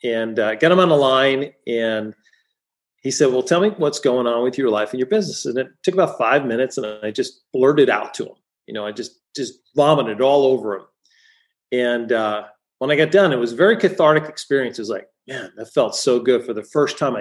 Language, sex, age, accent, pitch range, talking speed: English, male, 40-59, American, 125-170 Hz, 235 wpm